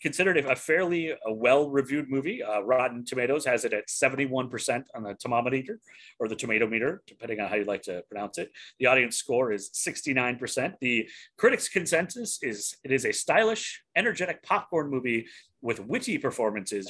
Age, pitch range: 30-49, 115-150 Hz